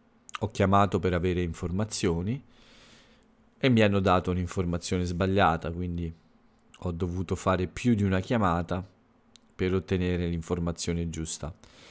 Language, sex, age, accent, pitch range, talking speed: Italian, male, 40-59, native, 90-110 Hz, 115 wpm